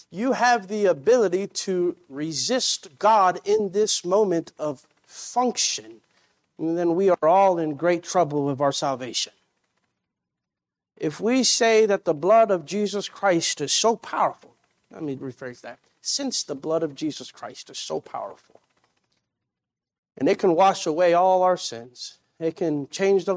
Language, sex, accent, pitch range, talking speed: English, male, American, 165-205 Hz, 155 wpm